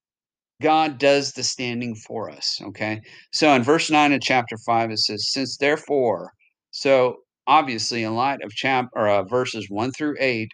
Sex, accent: male, American